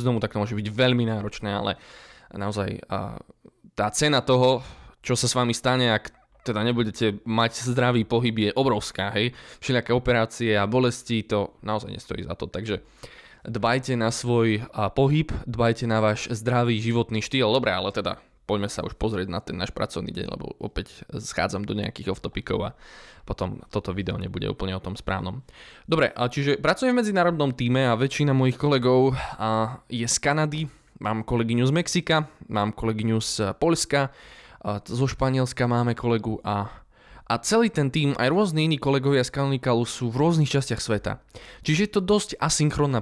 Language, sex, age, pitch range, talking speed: Slovak, male, 20-39, 110-145 Hz, 165 wpm